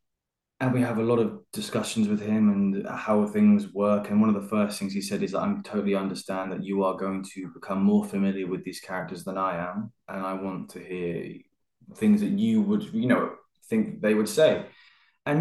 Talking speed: 215 wpm